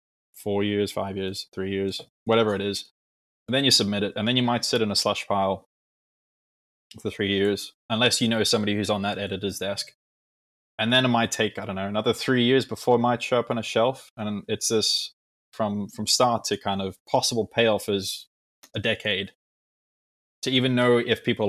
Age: 20-39